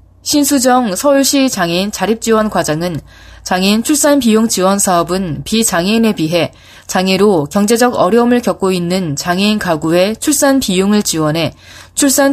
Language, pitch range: Korean, 170-240 Hz